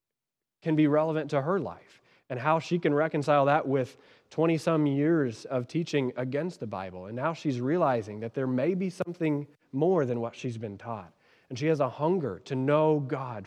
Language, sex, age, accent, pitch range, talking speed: English, male, 20-39, American, 125-160 Hz, 190 wpm